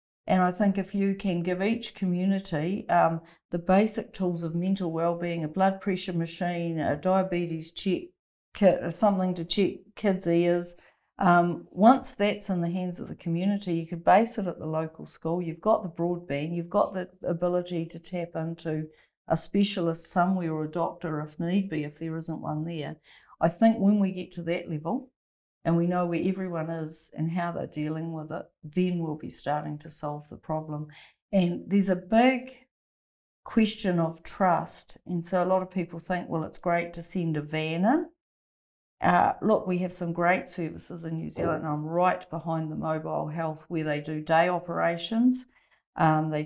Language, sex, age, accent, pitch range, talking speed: English, female, 50-69, Australian, 160-185 Hz, 185 wpm